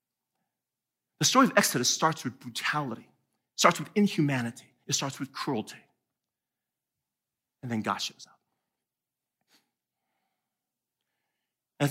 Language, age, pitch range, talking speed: English, 40-59, 125-185 Hz, 105 wpm